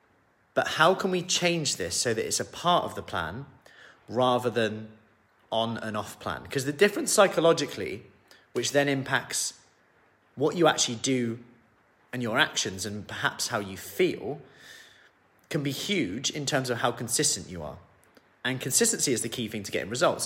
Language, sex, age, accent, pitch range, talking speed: English, male, 30-49, British, 105-135 Hz, 170 wpm